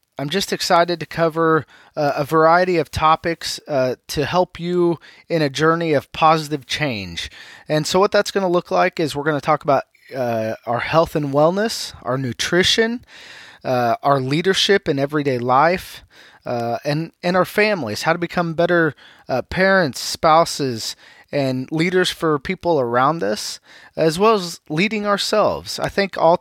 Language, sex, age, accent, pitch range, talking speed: English, male, 20-39, American, 140-175 Hz, 165 wpm